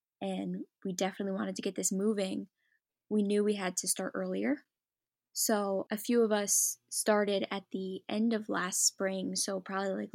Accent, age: American, 10-29